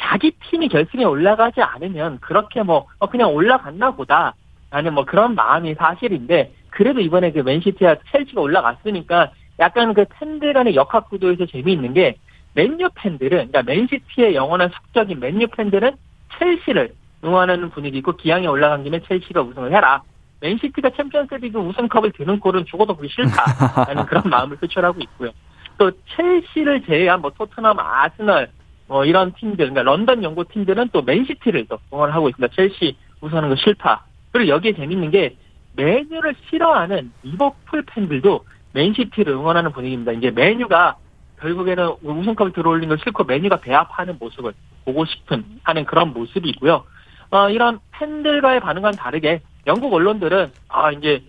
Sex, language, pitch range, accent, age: male, Korean, 155-235 Hz, native, 40-59